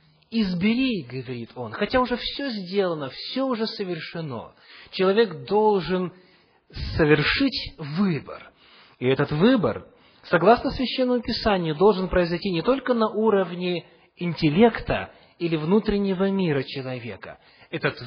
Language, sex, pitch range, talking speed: English, male, 140-200 Hz, 105 wpm